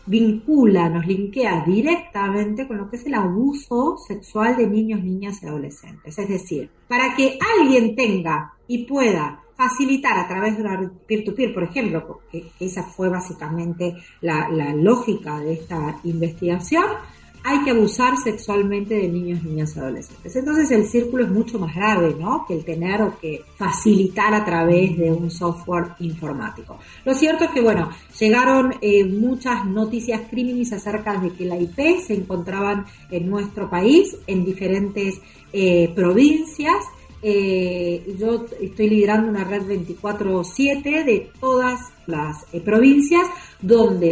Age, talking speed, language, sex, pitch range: 40-59, 145 wpm, Spanish, female, 180-245 Hz